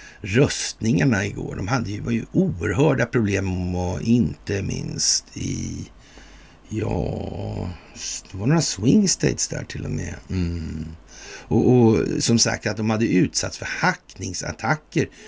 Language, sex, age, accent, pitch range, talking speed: Swedish, male, 60-79, native, 95-130 Hz, 130 wpm